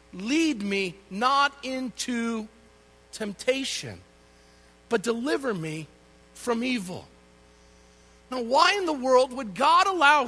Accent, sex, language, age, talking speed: American, male, English, 50-69, 105 wpm